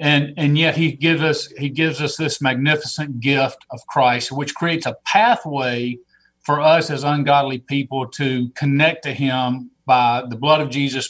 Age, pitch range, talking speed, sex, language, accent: 40-59, 125-150 Hz, 160 wpm, male, English, American